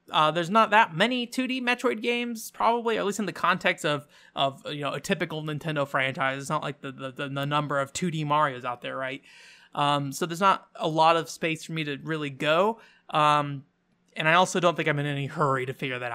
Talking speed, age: 225 wpm, 20-39